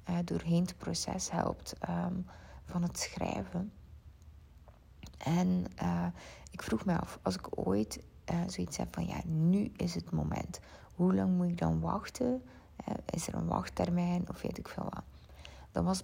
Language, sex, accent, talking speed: Dutch, female, Dutch, 160 wpm